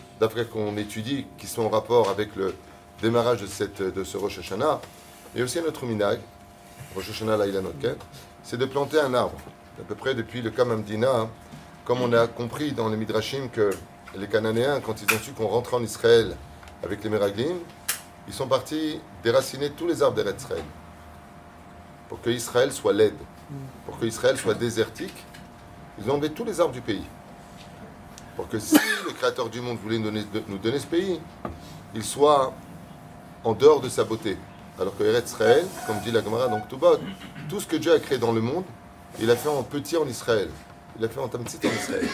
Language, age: French, 30-49